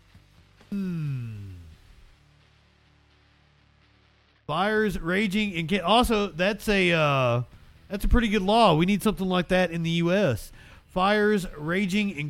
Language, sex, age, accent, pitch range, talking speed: English, male, 40-59, American, 120-185 Hz, 120 wpm